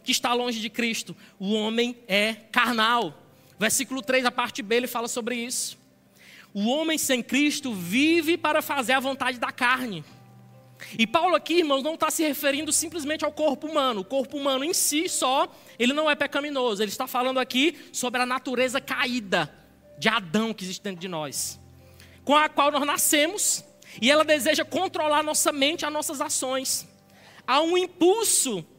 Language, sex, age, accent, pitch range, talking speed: Portuguese, male, 20-39, Brazilian, 210-280 Hz, 175 wpm